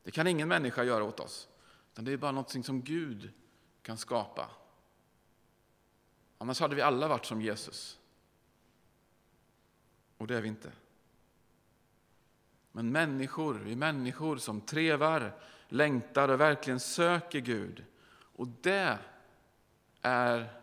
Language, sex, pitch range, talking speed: Swedish, male, 115-150 Hz, 125 wpm